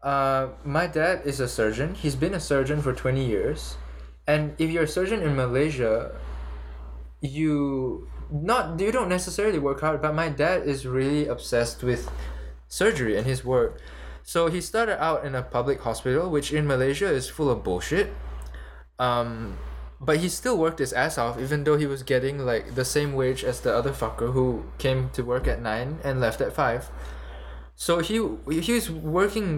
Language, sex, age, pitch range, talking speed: English, male, 20-39, 115-155 Hz, 180 wpm